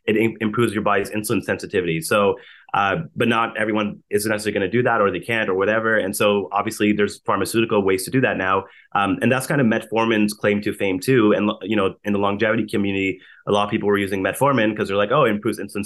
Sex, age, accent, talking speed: male, 30-49, American, 240 wpm